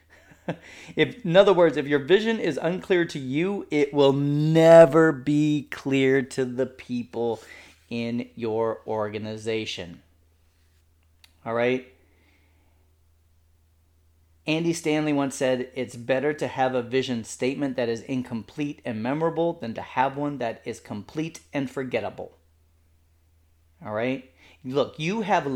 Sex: male